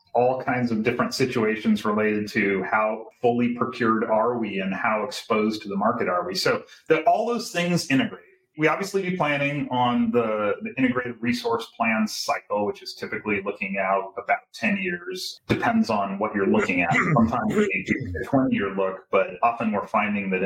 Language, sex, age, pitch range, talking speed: English, male, 30-49, 110-175 Hz, 185 wpm